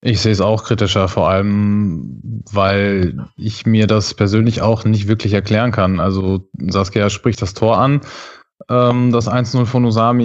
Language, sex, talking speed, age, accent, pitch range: German, male, 160 wpm, 20-39, German, 100-120 Hz